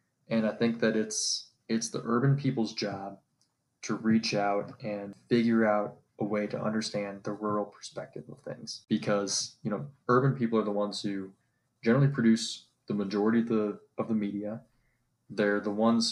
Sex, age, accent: male, 20-39, American